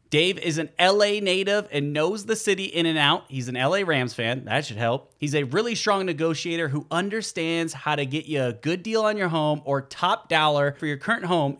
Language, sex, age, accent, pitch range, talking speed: English, male, 30-49, American, 135-185 Hz, 230 wpm